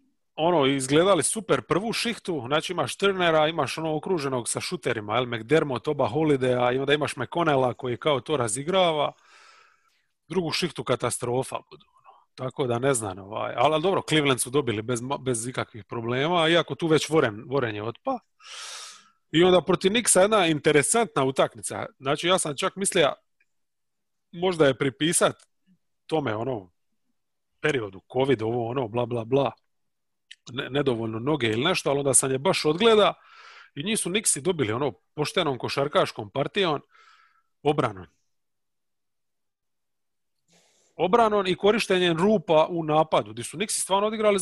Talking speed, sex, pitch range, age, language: 145 wpm, male, 130-190 Hz, 30-49, English